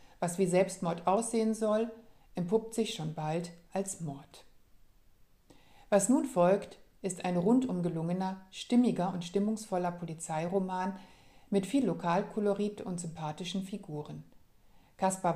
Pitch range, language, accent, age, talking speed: 175-210 Hz, German, German, 60-79, 115 wpm